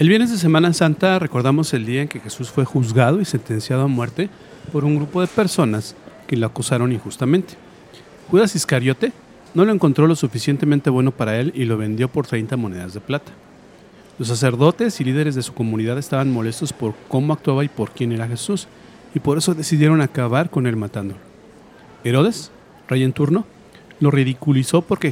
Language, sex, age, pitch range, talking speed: Spanish, male, 40-59, 125-165 Hz, 180 wpm